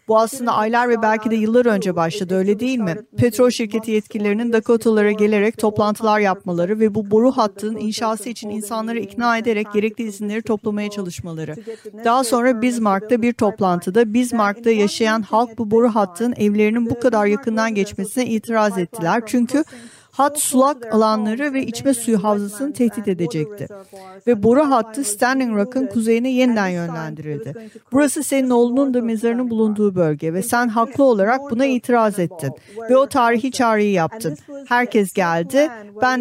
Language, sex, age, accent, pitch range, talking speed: Turkish, female, 50-69, native, 205-245 Hz, 150 wpm